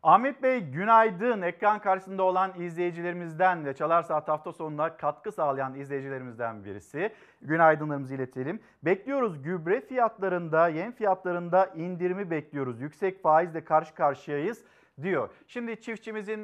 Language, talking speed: Turkish, 115 wpm